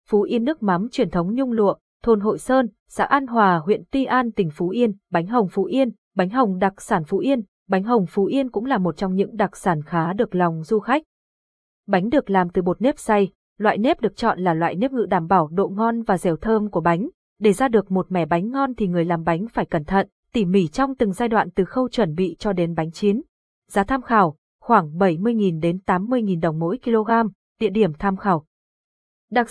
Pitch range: 185-230 Hz